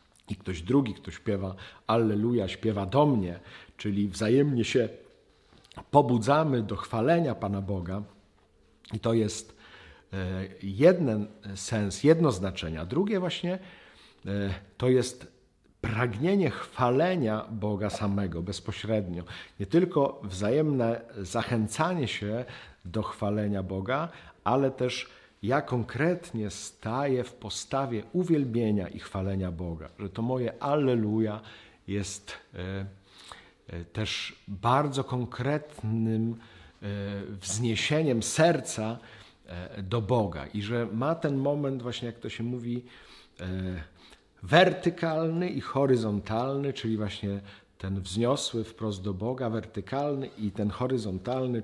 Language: Polish